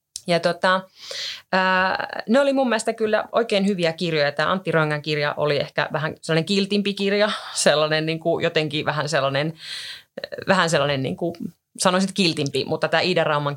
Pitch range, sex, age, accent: 145-180 Hz, female, 30-49, native